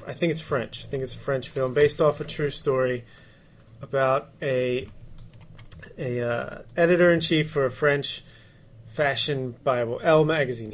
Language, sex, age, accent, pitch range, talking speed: English, male, 30-49, American, 125-145 Hz, 150 wpm